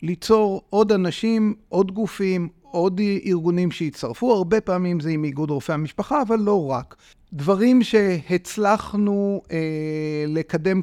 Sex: male